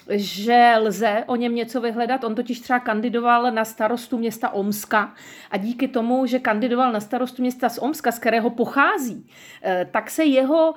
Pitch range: 215-260 Hz